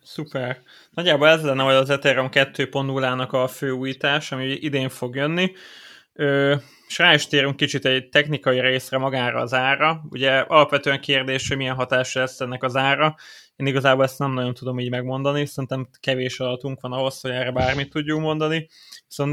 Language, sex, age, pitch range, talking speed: Hungarian, male, 20-39, 130-145 Hz, 170 wpm